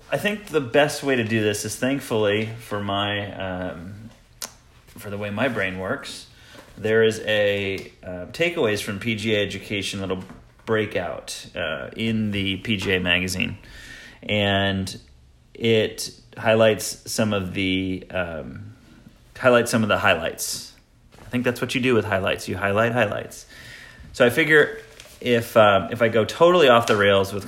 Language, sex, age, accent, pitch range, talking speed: English, male, 30-49, American, 95-115 Hz, 155 wpm